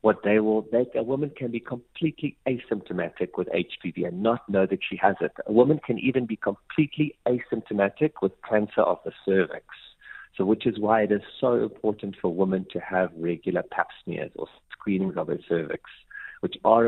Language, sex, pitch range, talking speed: English, male, 95-120 Hz, 190 wpm